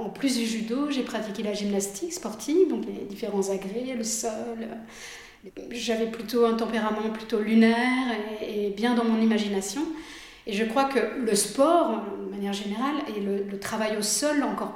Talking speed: 165 wpm